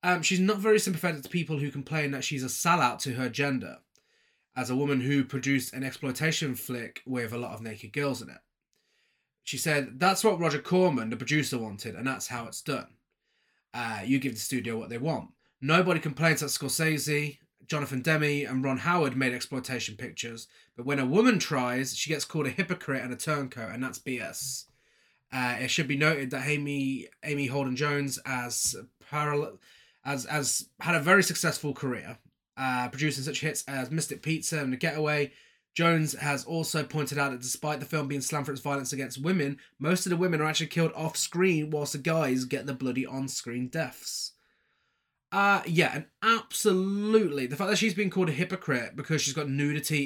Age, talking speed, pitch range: 20-39, 195 wpm, 130-160 Hz